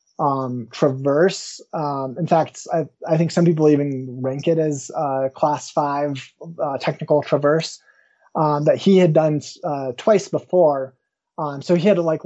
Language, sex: English, male